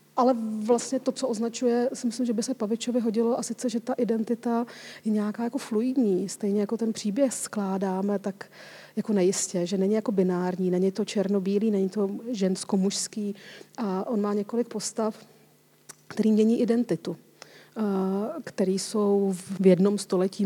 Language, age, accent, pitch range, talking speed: Czech, 40-59, native, 195-225 Hz, 155 wpm